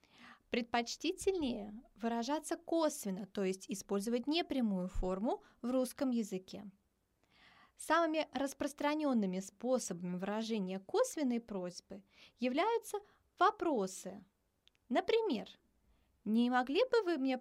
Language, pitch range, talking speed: Turkish, 195-295 Hz, 85 wpm